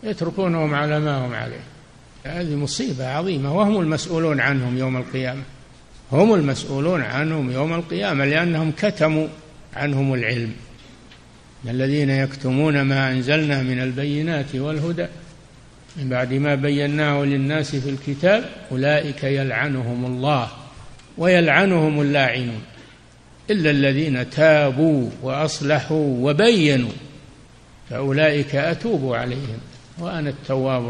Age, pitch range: 60-79, 130-170 Hz